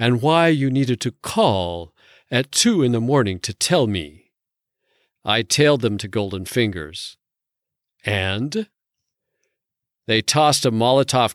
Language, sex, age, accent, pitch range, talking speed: English, male, 50-69, American, 95-135 Hz, 130 wpm